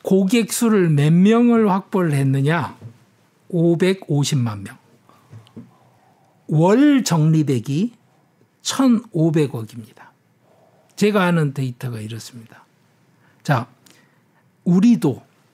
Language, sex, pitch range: Korean, male, 140-205 Hz